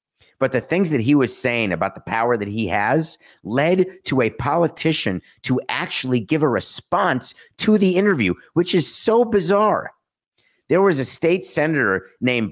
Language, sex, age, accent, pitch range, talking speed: English, male, 50-69, American, 115-175 Hz, 170 wpm